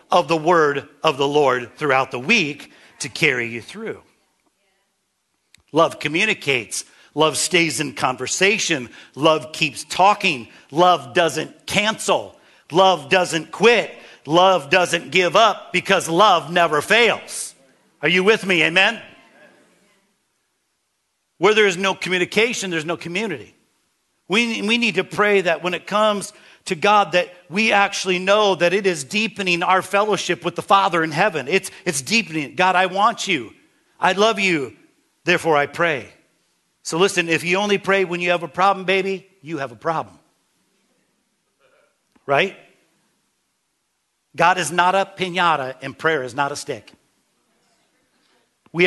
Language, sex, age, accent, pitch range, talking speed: English, male, 50-69, American, 155-195 Hz, 145 wpm